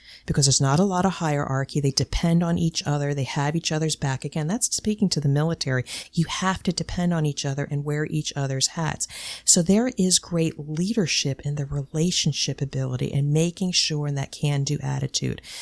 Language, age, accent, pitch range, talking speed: English, 40-59, American, 140-165 Hz, 190 wpm